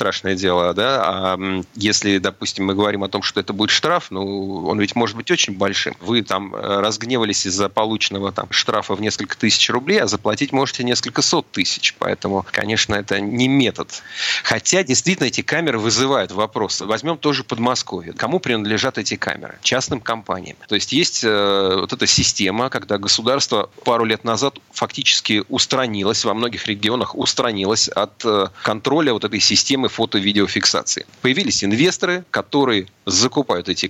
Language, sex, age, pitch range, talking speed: Russian, male, 30-49, 100-130 Hz, 155 wpm